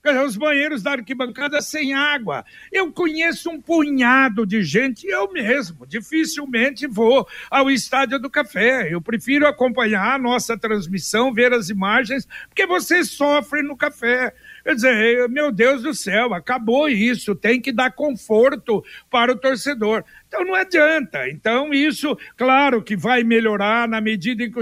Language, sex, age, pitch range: Portuguese, male, 60-79, 220-275 Hz